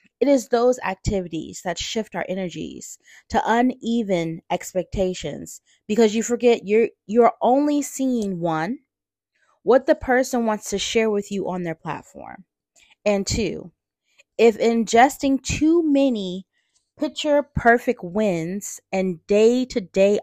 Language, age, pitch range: English, 20-39, 185-245 Hz